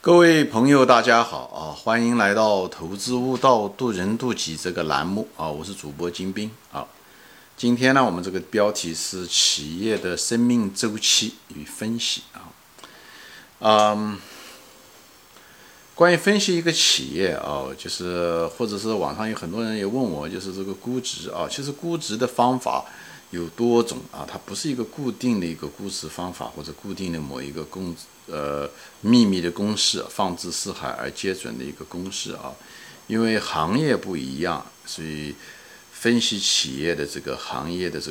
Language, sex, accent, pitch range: Chinese, male, native, 90-125 Hz